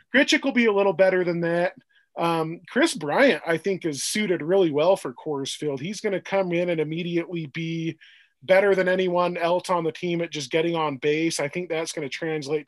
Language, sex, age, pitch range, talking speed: English, male, 20-39, 145-185 Hz, 220 wpm